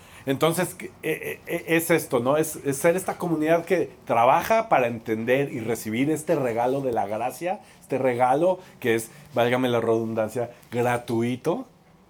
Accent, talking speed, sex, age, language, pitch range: Mexican, 140 wpm, male, 40-59, Spanish, 125-195 Hz